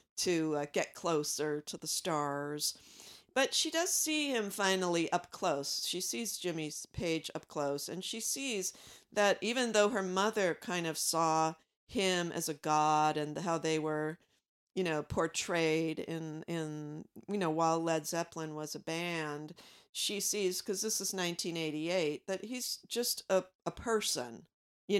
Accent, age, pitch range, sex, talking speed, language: American, 50-69, 155-200 Hz, female, 160 wpm, English